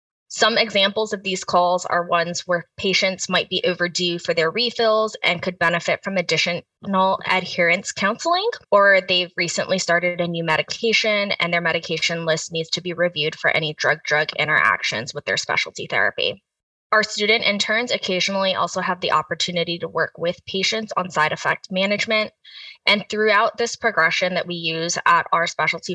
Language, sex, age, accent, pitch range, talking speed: English, female, 20-39, American, 170-200 Hz, 165 wpm